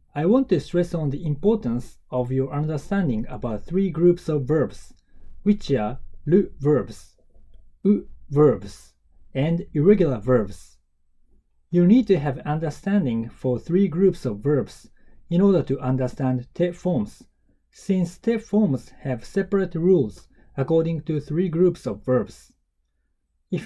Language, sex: Japanese, male